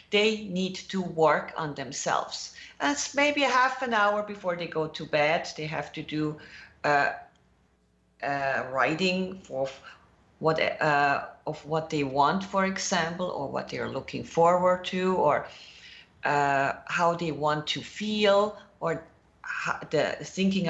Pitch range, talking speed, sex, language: 150-190 Hz, 145 wpm, female, English